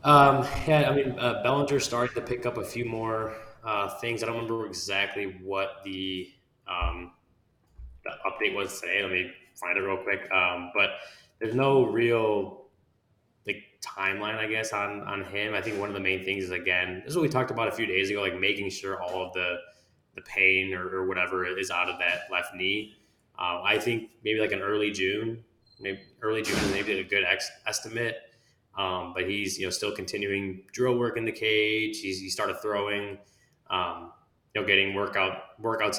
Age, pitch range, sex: 20-39, 95-115 Hz, male